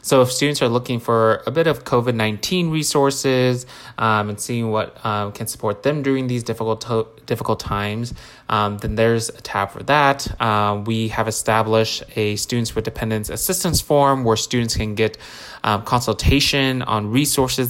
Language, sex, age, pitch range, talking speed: English, male, 20-39, 110-125 Hz, 170 wpm